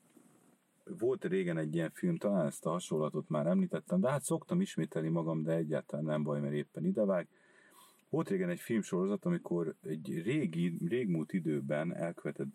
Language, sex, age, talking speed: Hungarian, male, 50-69, 160 wpm